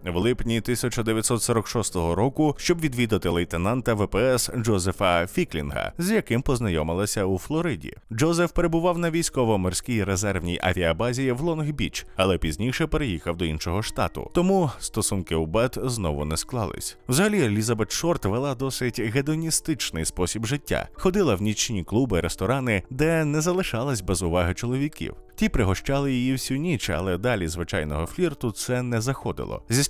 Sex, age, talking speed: male, 20-39, 135 wpm